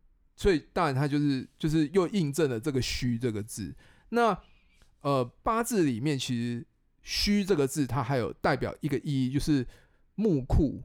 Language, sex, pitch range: Chinese, male, 120-160 Hz